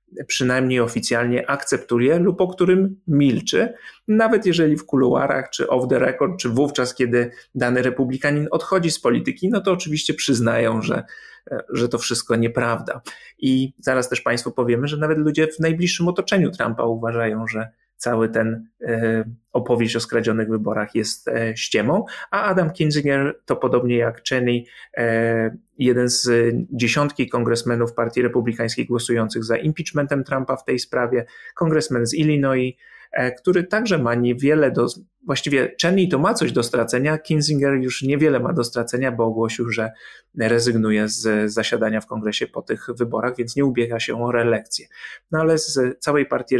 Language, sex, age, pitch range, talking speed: Polish, male, 30-49, 115-150 Hz, 150 wpm